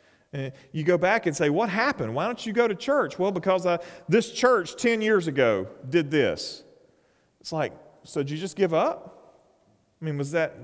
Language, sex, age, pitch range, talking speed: English, male, 40-59, 220-275 Hz, 205 wpm